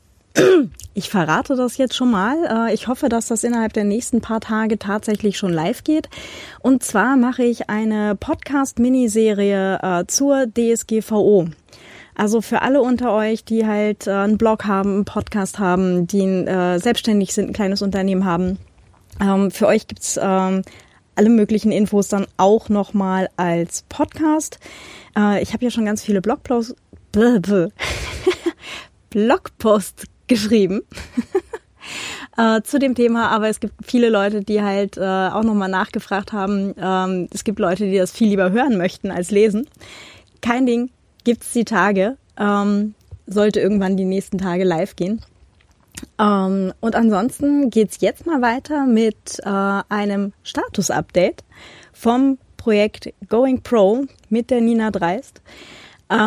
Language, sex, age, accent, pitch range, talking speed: German, female, 30-49, German, 195-235 Hz, 135 wpm